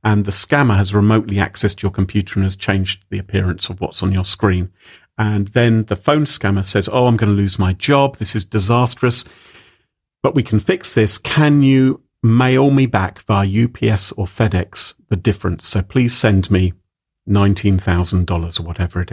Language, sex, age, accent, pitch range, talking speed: English, male, 40-59, British, 95-125 Hz, 180 wpm